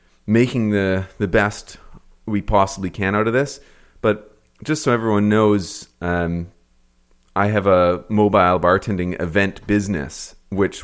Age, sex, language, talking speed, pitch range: 30-49, male, English, 135 wpm, 85-105 Hz